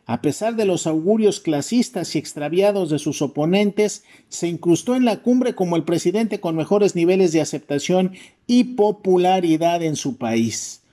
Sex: male